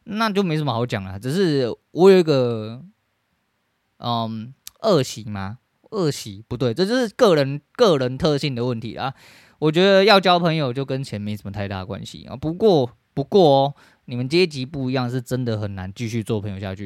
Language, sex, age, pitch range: Chinese, male, 20-39, 110-140 Hz